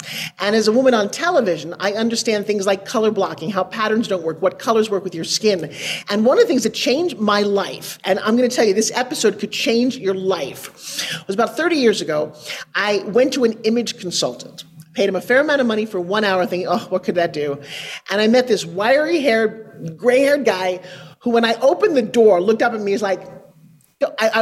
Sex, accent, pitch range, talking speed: male, American, 190-240 Hz, 220 wpm